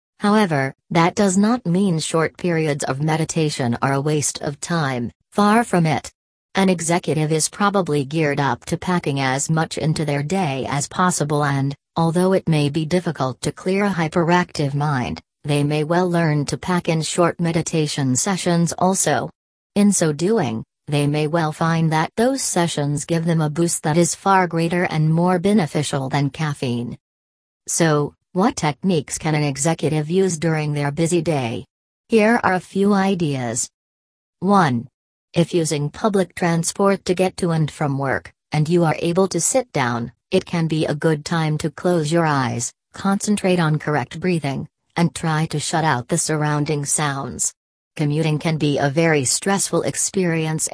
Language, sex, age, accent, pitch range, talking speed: English, female, 40-59, American, 145-180 Hz, 165 wpm